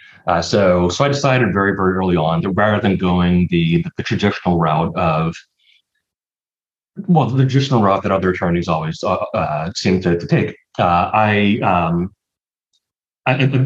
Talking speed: 165 wpm